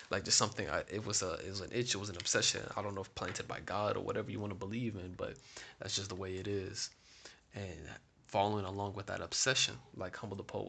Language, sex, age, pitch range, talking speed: English, male, 20-39, 95-110 Hz, 260 wpm